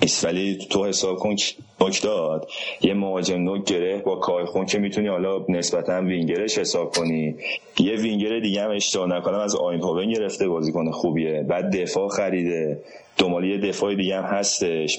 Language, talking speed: Persian, 150 wpm